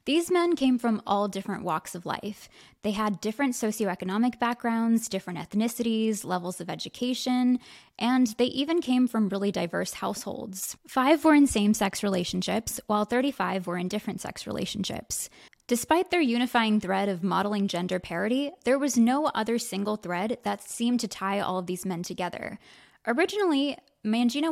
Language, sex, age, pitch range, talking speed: English, female, 20-39, 195-255 Hz, 155 wpm